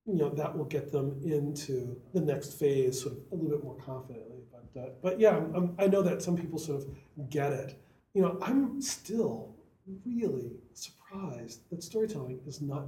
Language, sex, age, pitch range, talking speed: English, male, 40-59, 135-185 Hz, 195 wpm